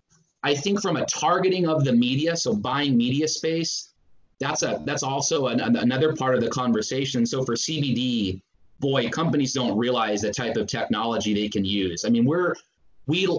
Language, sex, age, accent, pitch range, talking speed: English, male, 30-49, American, 120-155 Hz, 185 wpm